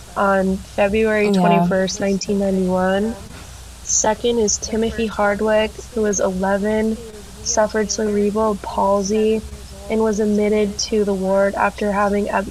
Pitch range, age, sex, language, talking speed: 195-220 Hz, 20-39, female, English, 115 wpm